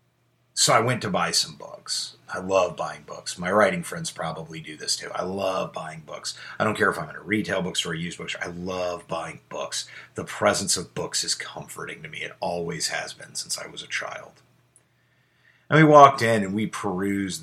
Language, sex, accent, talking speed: English, male, American, 215 wpm